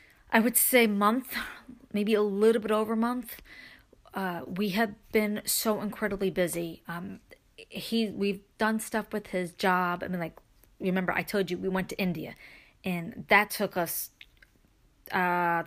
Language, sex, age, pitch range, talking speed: English, female, 30-49, 180-220 Hz, 155 wpm